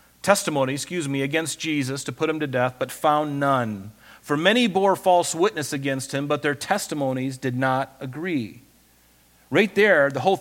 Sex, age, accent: male, 40-59, American